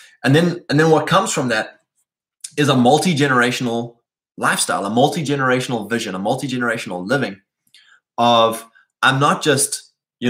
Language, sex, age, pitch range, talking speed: English, male, 20-39, 115-140 Hz, 135 wpm